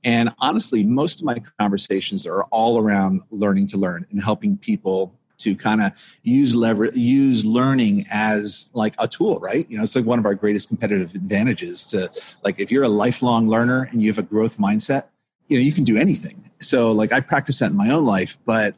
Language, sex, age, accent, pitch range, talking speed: English, male, 40-59, American, 105-145 Hz, 210 wpm